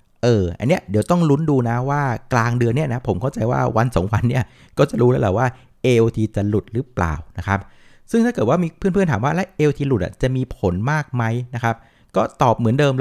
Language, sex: Thai, male